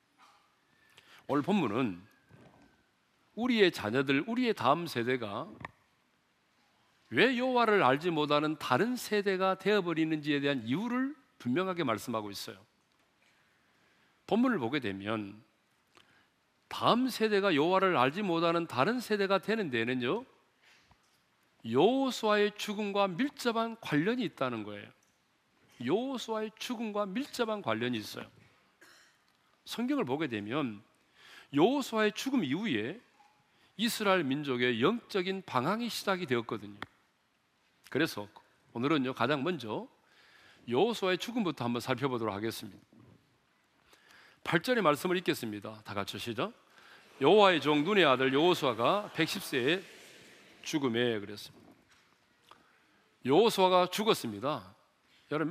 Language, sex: Korean, male